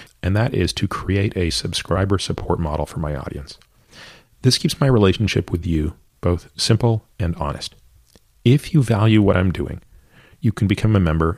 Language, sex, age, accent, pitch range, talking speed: English, male, 40-59, American, 85-110 Hz, 175 wpm